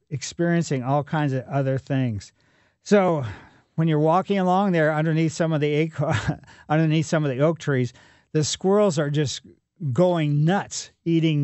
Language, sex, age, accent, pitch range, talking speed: English, male, 50-69, American, 125-160 Hz, 155 wpm